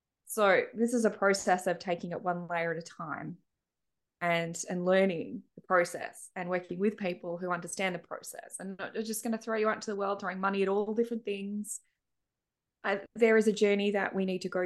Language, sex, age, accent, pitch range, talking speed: English, female, 20-39, Australian, 180-215 Hz, 215 wpm